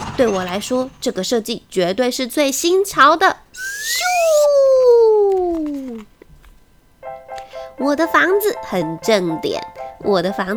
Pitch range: 195-330 Hz